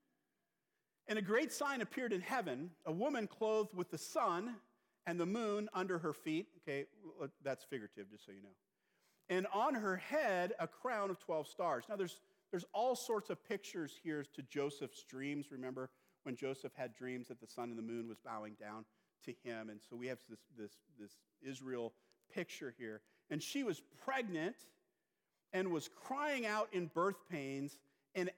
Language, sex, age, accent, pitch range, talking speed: English, male, 40-59, American, 135-200 Hz, 180 wpm